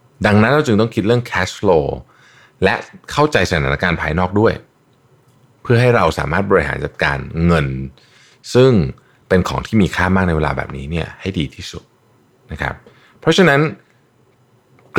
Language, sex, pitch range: Thai, male, 80-120 Hz